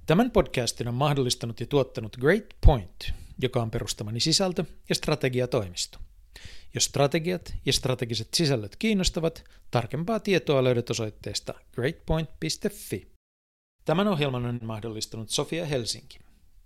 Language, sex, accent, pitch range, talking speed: Finnish, male, native, 115-145 Hz, 110 wpm